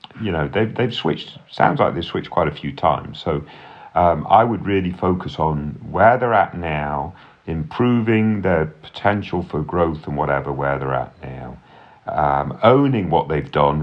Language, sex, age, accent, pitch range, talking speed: English, male, 40-59, British, 75-100 Hz, 175 wpm